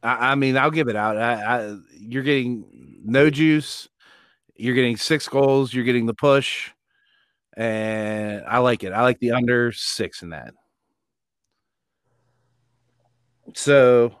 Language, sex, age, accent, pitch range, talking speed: English, male, 30-49, American, 115-140 Hz, 125 wpm